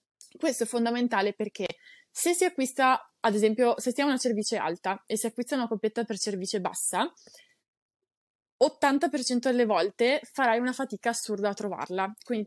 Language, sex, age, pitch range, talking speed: Italian, female, 20-39, 205-255 Hz, 160 wpm